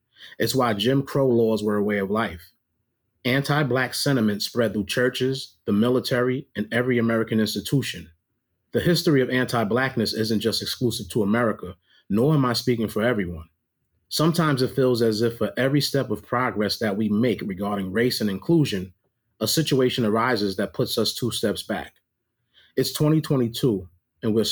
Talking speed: 160 wpm